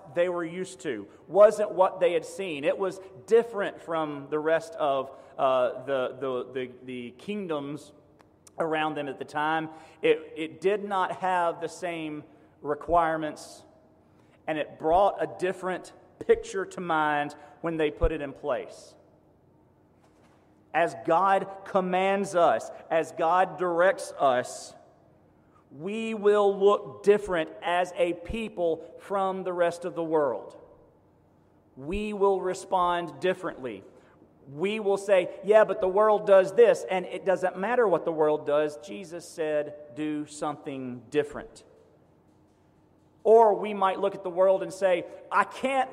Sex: male